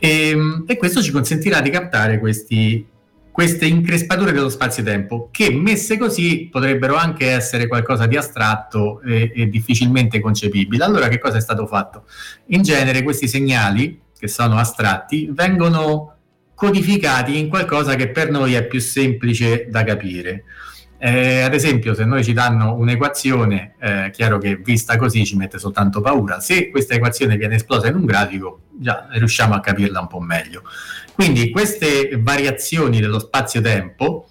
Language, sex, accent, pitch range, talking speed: Italian, male, native, 110-145 Hz, 150 wpm